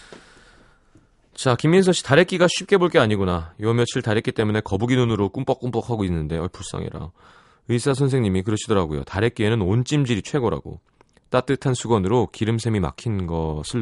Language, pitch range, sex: Korean, 90-130 Hz, male